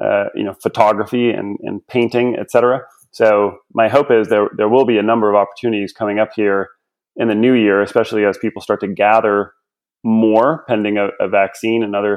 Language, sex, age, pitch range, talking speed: English, male, 30-49, 105-125 Hz, 195 wpm